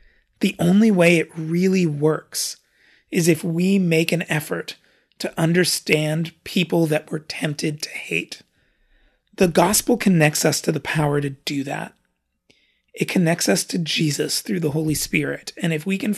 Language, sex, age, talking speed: English, male, 30-49, 160 wpm